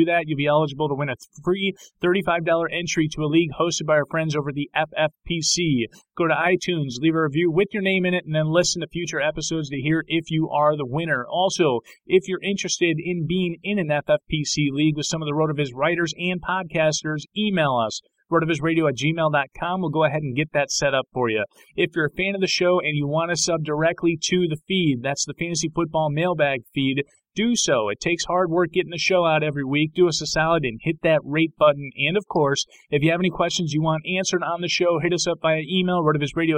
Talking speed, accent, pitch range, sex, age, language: 230 wpm, American, 145-175 Hz, male, 30-49, English